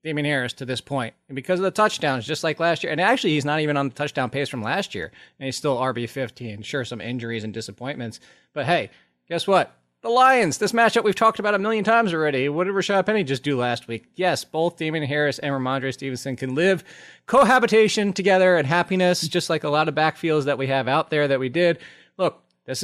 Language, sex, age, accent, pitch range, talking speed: English, male, 20-39, American, 125-170 Hz, 230 wpm